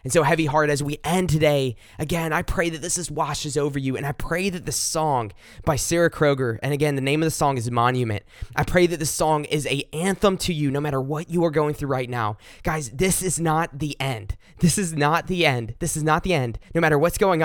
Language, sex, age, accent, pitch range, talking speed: English, male, 20-39, American, 130-170 Hz, 255 wpm